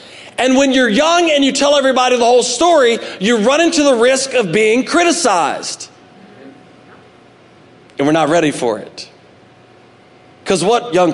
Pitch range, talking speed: 150-225 Hz, 150 wpm